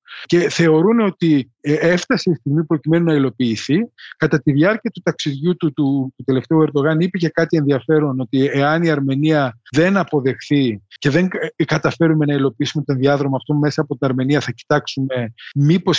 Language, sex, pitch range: Greek, male, 135-165 Hz